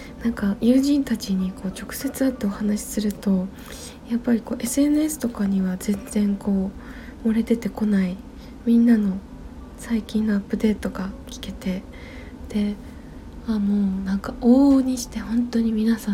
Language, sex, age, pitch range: Japanese, female, 20-39, 200-250 Hz